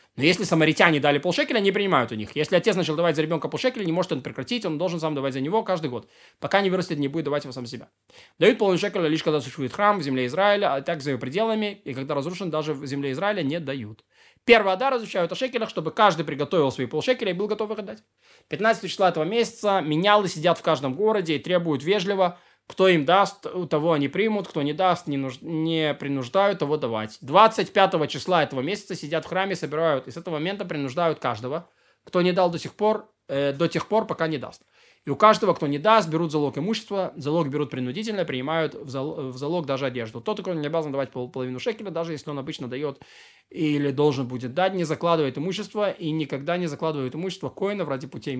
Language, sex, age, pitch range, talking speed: Russian, male, 20-39, 140-190 Hz, 215 wpm